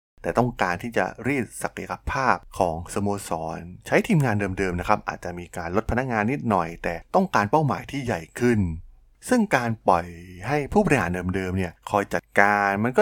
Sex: male